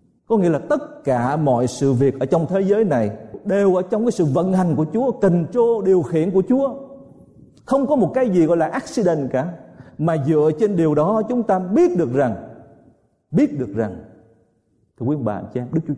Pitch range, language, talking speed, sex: 115-190 Hz, Vietnamese, 220 wpm, male